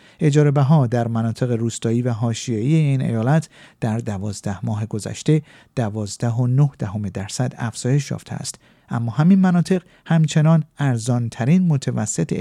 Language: Persian